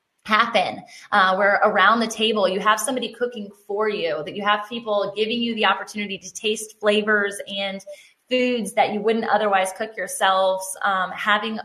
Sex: female